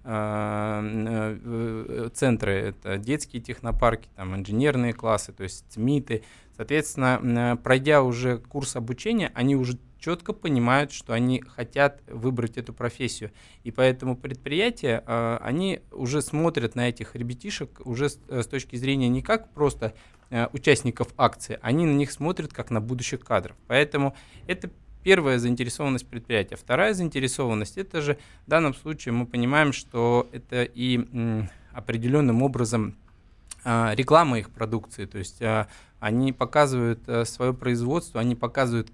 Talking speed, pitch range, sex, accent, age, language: 125 wpm, 115-135 Hz, male, native, 20-39, Russian